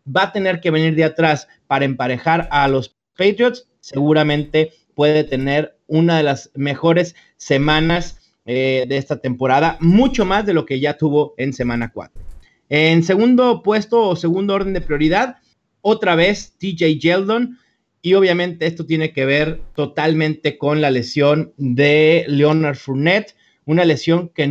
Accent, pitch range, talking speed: Mexican, 150-185 Hz, 150 wpm